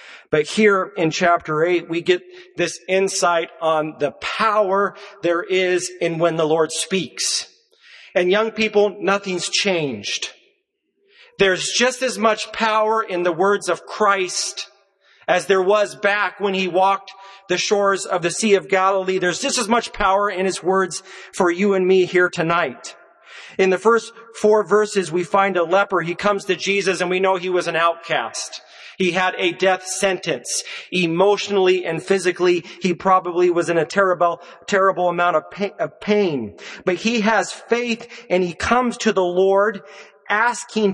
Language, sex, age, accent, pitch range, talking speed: English, male, 40-59, American, 180-215 Hz, 165 wpm